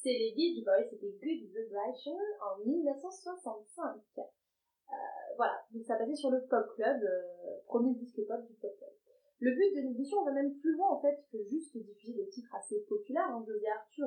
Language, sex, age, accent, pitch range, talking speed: French, female, 20-39, French, 215-295 Hz, 190 wpm